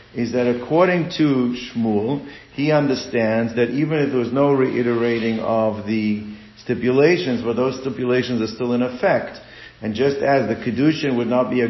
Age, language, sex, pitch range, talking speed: 50-69, English, male, 115-135 Hz, 175 wpm